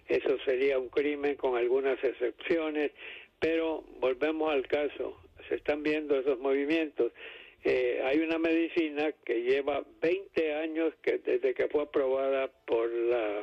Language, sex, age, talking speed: English, male, 60-79, 140 wpm